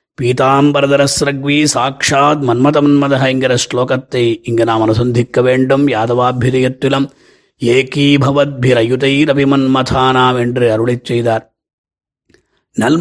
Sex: male